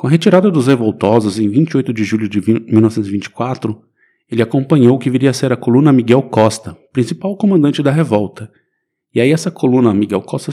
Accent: Brazilian